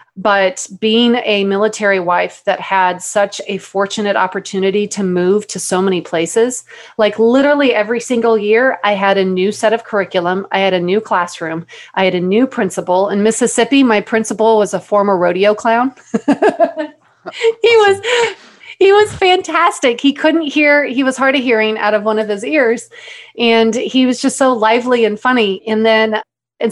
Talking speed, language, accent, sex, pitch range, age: 175 wpm, English, American, female, 195-235 Hz, 30-49